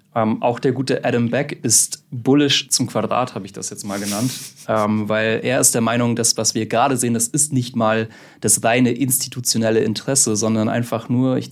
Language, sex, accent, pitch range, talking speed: German, male, German, 105-125 Hz, 205 wpm